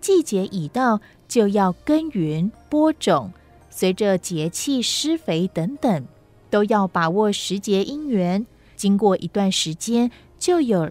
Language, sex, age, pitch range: Chinese, female, 30-49, 180-250 Hz